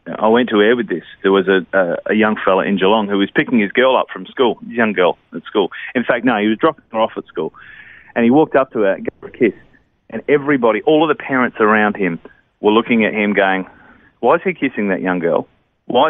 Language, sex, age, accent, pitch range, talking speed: English, male, 30-49, Australian, 110-150 Hz, 255 wpm